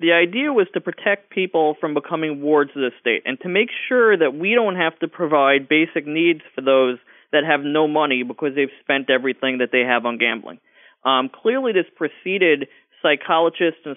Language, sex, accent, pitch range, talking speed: English, male, American, 135-180 Hz, 195 wpm